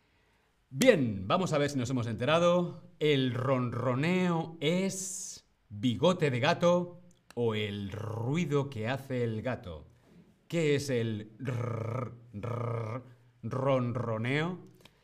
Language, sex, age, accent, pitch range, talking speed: Spanish, male, 40-59, Spanish, 110-160 Hz, 100 wpm